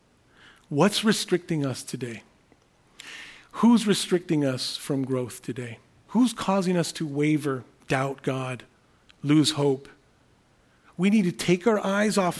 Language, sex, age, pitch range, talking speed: English, male, 40-59, 140-180 Hz, 125 wpm